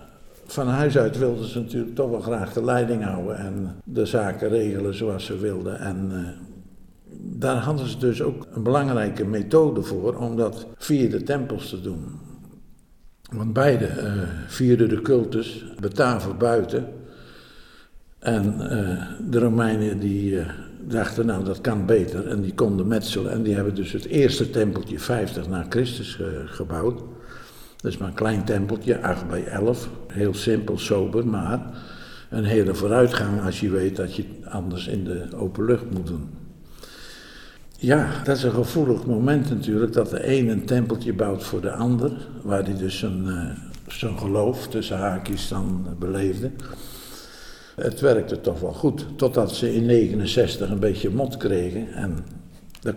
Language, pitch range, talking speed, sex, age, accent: Dutch, 95-120 Hz, 160 wpm, male, 60-79, Dutch